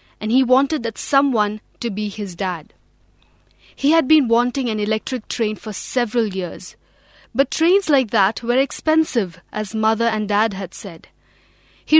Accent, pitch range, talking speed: Indian, 215-275 Hz, 160 wpm